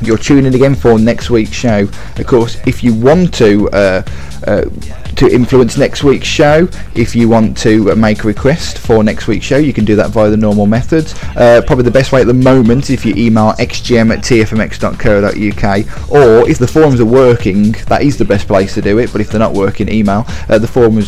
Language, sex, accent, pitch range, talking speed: English, male, British, 105-125 Hz, 220 wpm